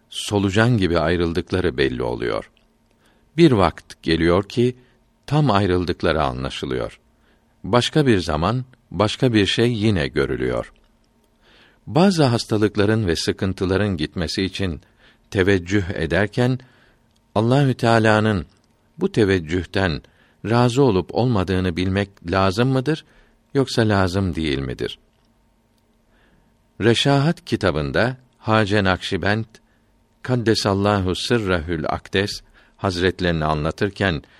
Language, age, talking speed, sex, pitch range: Turkish, 50-69, 90 wpm, male, 90-115 Hz